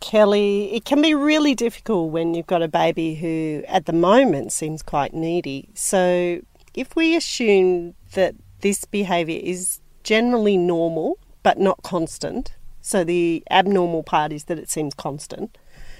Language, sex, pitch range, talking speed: English, female, 165-215 Hz, 150 wpm